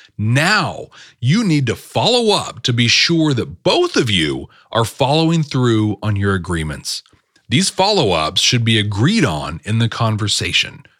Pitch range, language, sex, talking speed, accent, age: 110-155 Hz, English, male, 155 wpm, American, 40-59